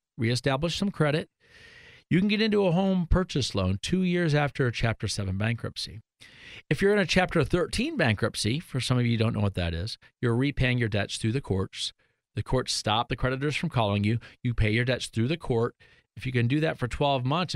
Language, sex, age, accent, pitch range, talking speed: English, male, 40-59, American, 115-150 Hz, 220 wpm